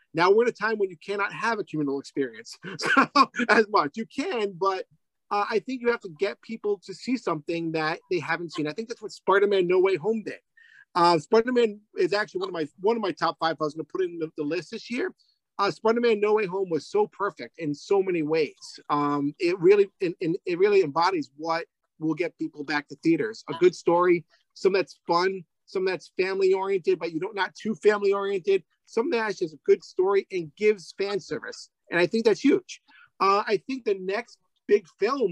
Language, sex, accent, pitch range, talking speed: English, male, American, 170-230 Hz, 220 wpm